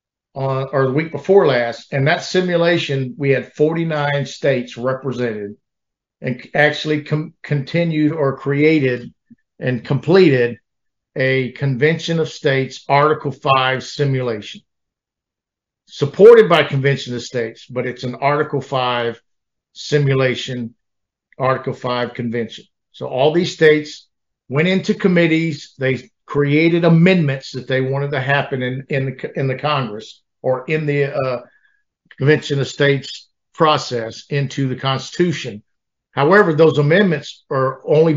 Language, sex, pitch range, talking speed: English, male, 130-155 Hz, 125 wpm